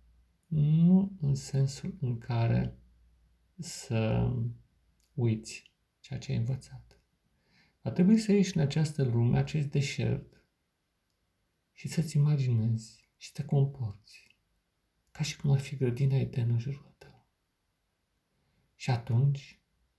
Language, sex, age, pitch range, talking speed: Romanian, male, 50-69, 110-145 Hz, 115 wpm